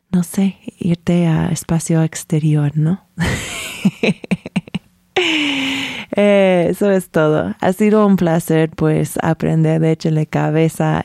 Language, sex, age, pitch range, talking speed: Spanish, female, 20-39, 150-175 Hz, 110 wpm